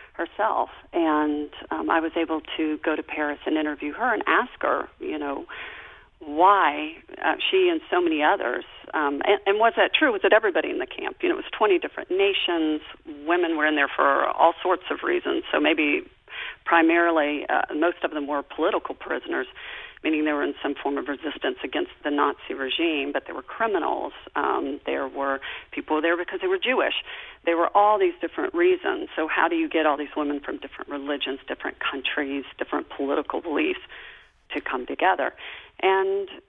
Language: English